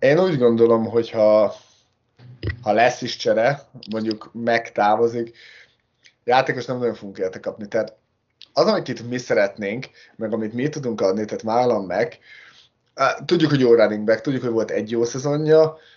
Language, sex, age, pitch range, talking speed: Hungarian, male, 20-39, 110-130 Hz, 160 wpm